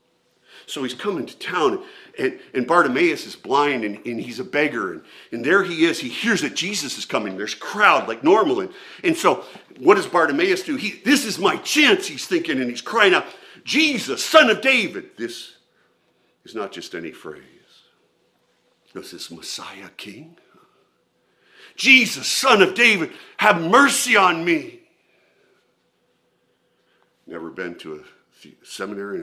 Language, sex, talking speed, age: English, male, 160 wpm, 50-69